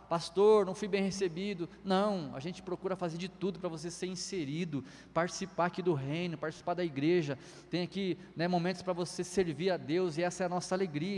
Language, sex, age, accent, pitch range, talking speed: Portuguese, male, 20-39, Brazilian, 180-240 Hz, 205 wpm